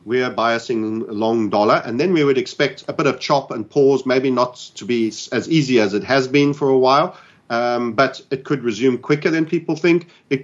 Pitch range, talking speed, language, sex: 115-145 Hz, 225 wpm, English, male